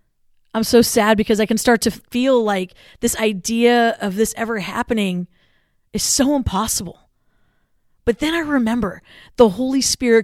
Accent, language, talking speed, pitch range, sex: American, English, 150 wpm, 200-250 Hz, female